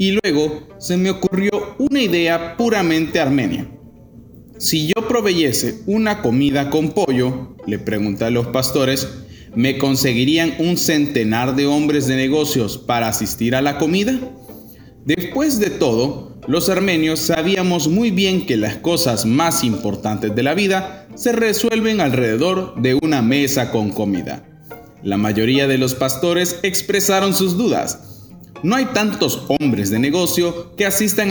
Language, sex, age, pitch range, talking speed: Spanish, male, 30-49, 130-190 Hz, 140 wpm